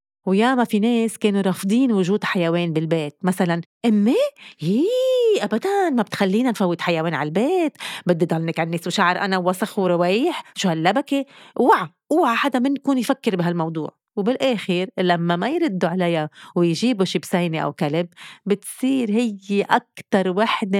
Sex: female